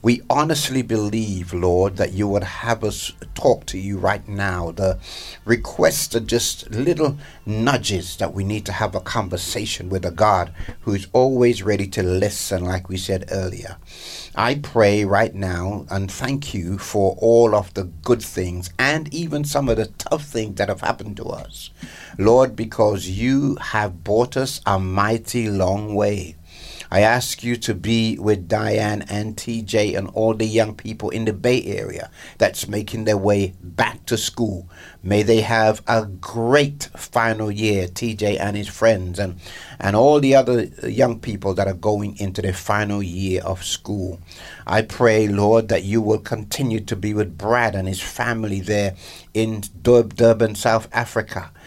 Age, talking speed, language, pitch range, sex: 60-79, 170 wpm, English, 95-115 Hz, male